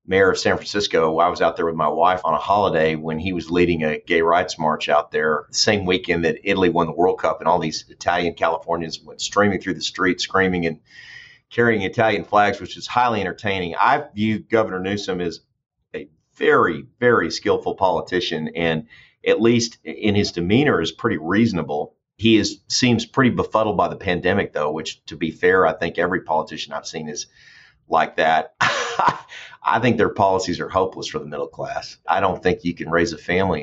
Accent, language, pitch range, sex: American, English, 85-105 Hz, male